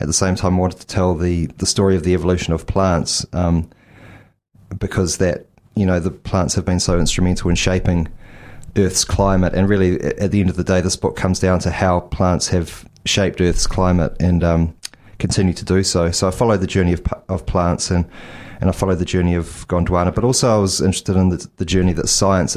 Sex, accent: male, Australian